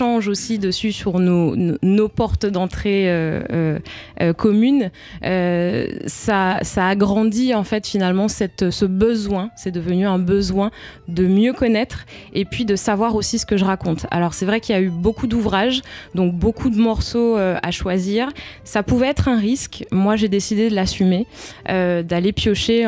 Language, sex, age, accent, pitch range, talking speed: French, female, 20-39, French, 180-215 Hz, 170 wpm